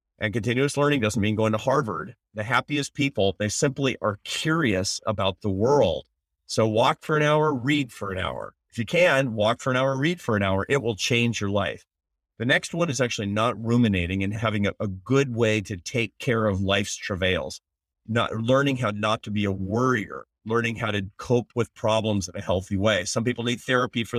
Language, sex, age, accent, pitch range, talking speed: English, male, 40-59, American, 100-120 Hz, 210 wpm